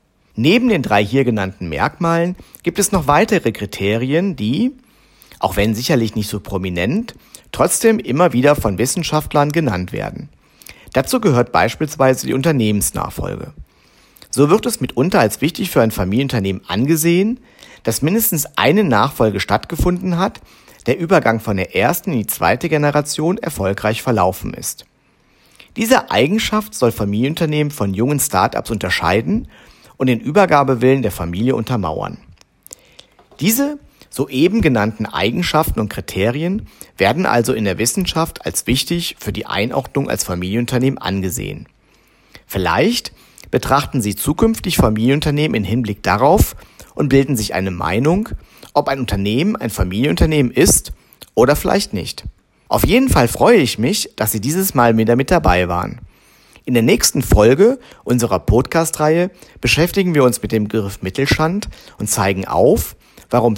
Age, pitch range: 50-69, 105-170 Hz